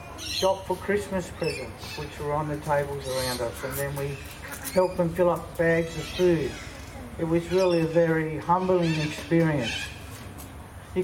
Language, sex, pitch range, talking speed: English, male, 125-180 Hz, 160 wpm